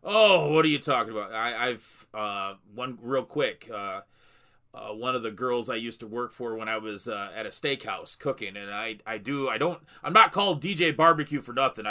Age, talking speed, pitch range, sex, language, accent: 30-49, 220 wpm, 120-150 Hz, male, English, American